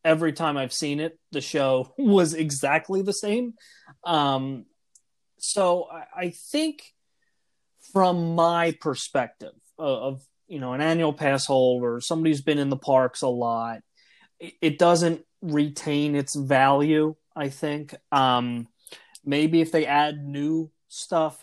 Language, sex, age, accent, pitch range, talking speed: English, male, 30-49, American, 135-165 Hz, 140 wpm